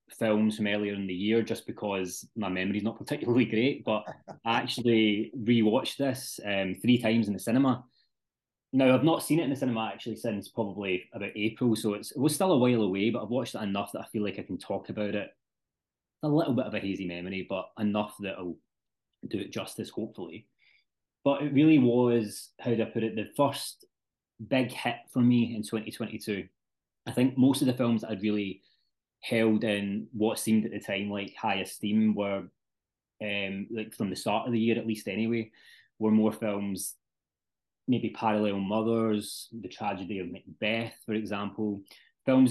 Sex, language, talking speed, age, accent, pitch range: male, English, 195 wpm, 20-39, British, 105-125 Hz